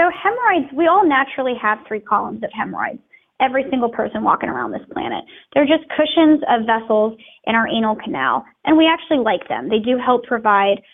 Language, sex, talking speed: English, female, 190 wpm